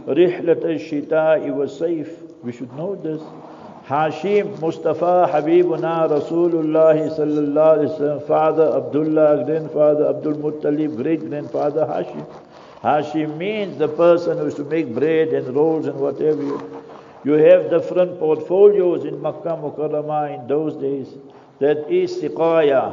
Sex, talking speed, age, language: male, 120 wpm, 60-79, English